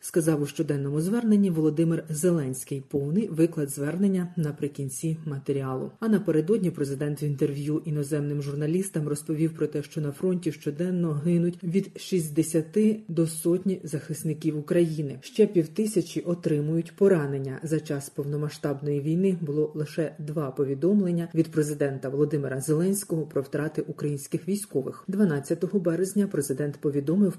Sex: female